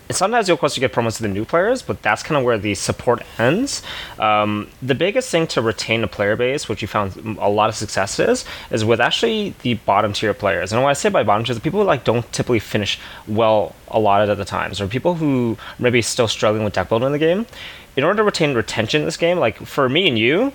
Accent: American